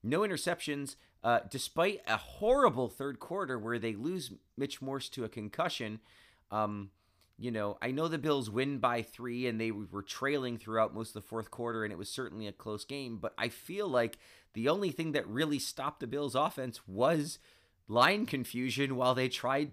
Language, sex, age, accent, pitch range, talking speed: English, male, 30-49, American, 95-140 Hz, 190 wpm